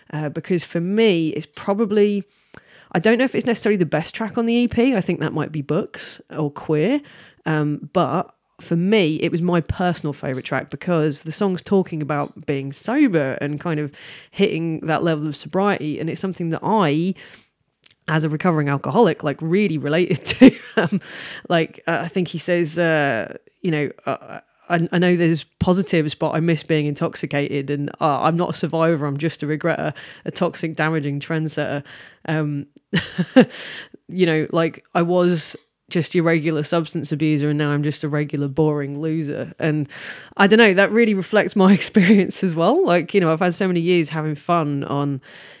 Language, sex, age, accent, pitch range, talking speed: English, female, 20-39, British, 150-185 Hz, 180 wpm